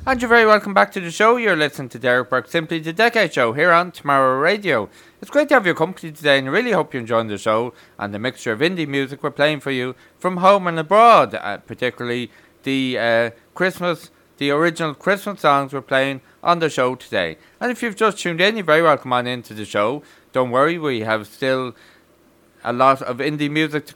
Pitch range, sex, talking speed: 130-180 Hz, male, 220 wpm